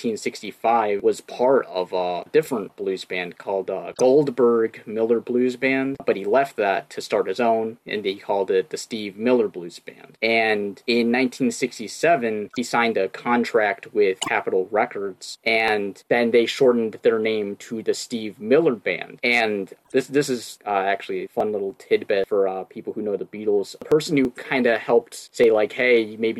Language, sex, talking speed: English, male, 180 wpm